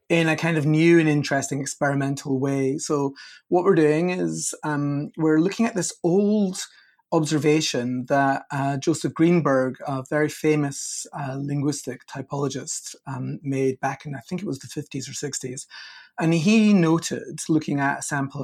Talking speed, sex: 165 wpm, male